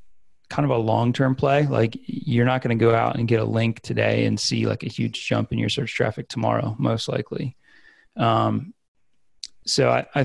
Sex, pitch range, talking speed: male, 110-125 Hz, 205 wpm